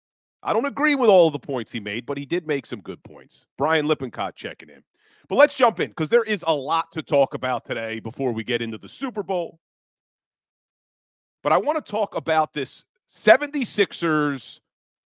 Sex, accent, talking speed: male, American, 190 wpm